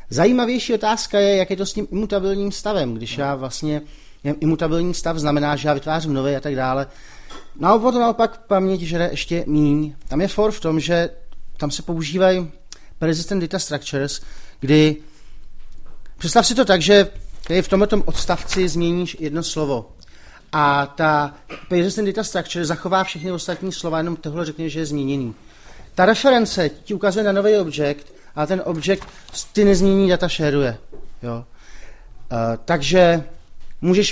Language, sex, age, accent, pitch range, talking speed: Czech, male, 40-59, native, 145-190 Hz, 155 wpm